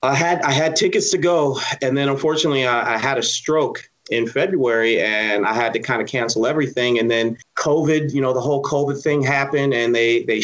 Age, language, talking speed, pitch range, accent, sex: 30-49, English, 220 wpm, 125-160 Hz, American, male